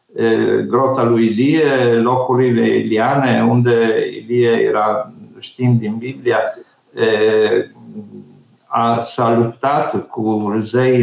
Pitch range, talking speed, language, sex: 120-150 Hz, 120 wpm, Romanian, male